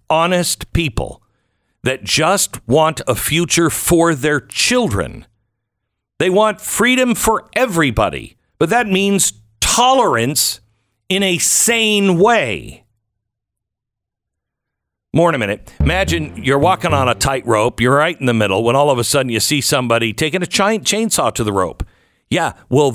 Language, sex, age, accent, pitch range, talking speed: English, male, 50-69, American, 115-155 Hz, 145 wpm